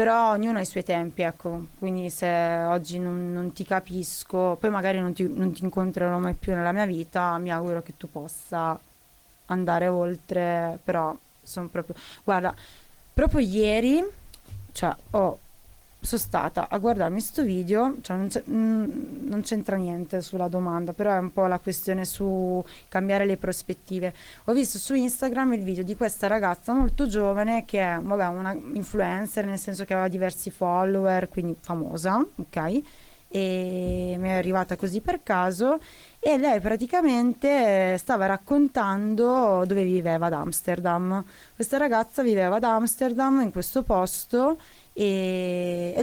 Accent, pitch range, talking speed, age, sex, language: native, 180-215 Hz, 145 wpm, 20-39, female, Italian